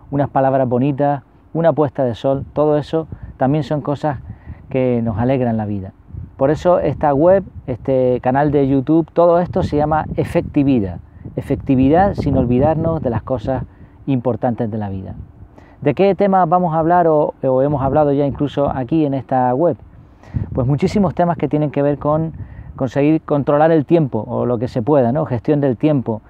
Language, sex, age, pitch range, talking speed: English, male, 40-59, 125-155 Hz, 175 wpm